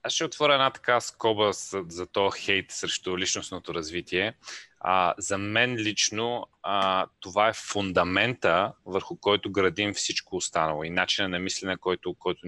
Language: Bulgarian